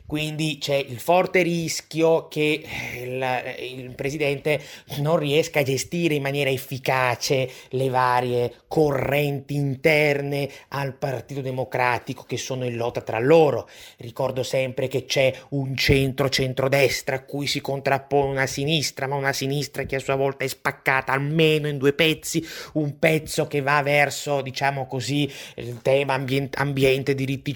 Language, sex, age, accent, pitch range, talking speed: Italian, male, 30-49, native, 130-150 Hz, 145 wpm